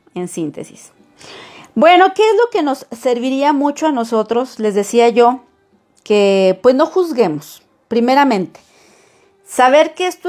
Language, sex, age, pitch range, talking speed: Spanish, female, 40-59, 210-300 Hz, 135 wpm